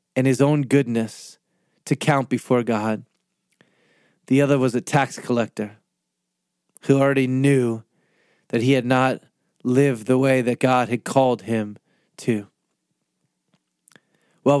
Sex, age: male, 30-49